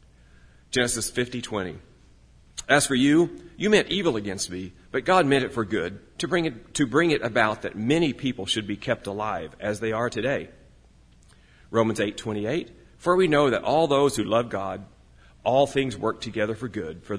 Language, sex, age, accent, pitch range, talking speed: English, male, 40-59, American, 95-130 Hz, 190 wpm